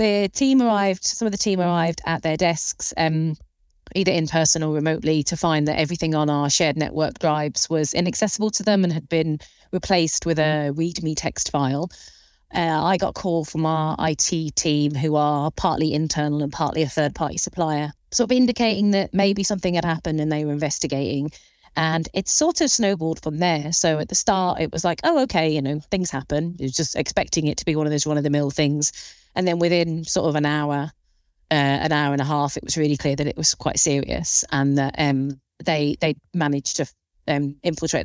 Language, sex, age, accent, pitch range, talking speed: English, female, 30-49, British, 150-170 Hz, 215 wpm